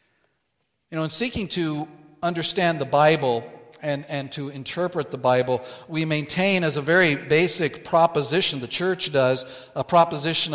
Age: 50-69